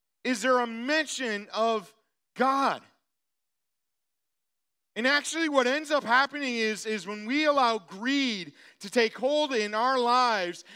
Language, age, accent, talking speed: English, 40-59, American, 135 wpm